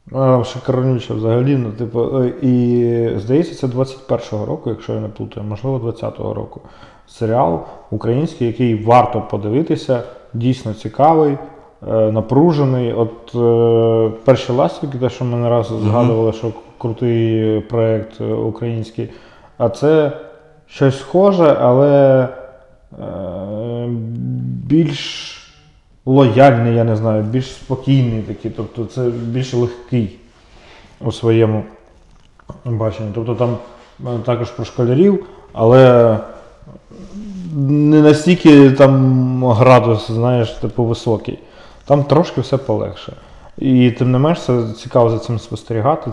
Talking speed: 105 wpm